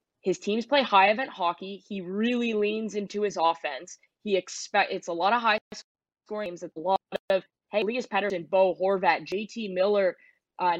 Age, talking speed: 20-39, 170 wpm